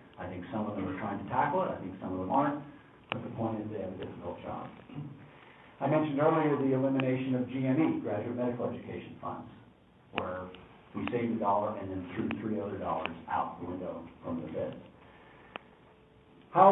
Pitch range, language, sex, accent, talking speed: 115-150 Hz, English, male, American, 195 wpm